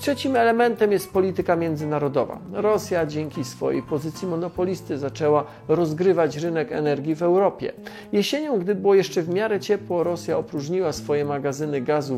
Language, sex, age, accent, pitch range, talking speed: Polish, male, 40-59, native, 140-195 Hz, 140 wpm